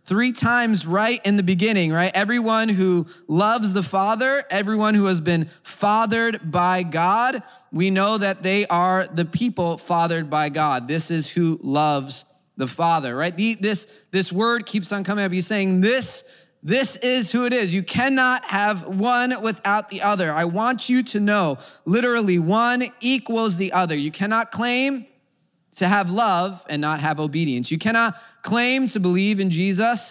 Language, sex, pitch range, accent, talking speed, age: English, male, 160-215 Hz, American, 170 wpm, 20-39